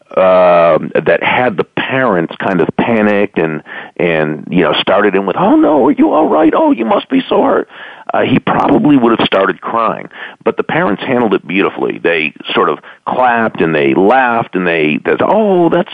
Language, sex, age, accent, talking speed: English, male, 50-69, American, 195 wpm